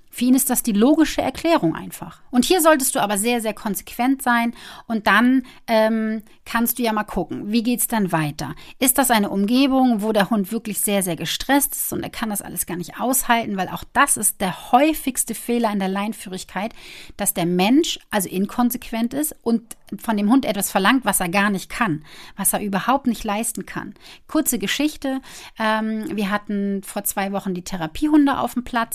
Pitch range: 185-240 Hz